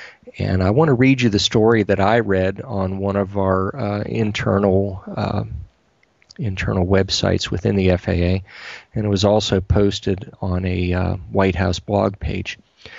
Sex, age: male, 40-59